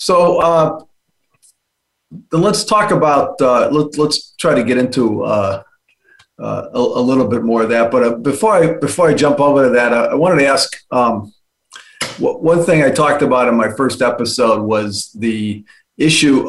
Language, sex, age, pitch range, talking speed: English, male, 40-59, 120-155 Hz, 180 wpm